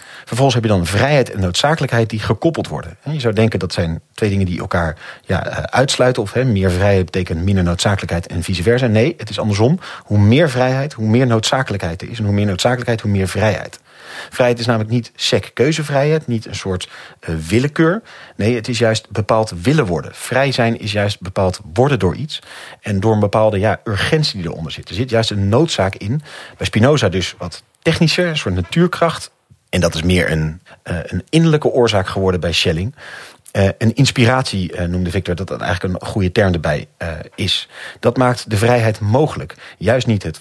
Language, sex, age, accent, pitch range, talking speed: Dutch, male, 40-59, Dutch, 95-125 Hz, 185 wpm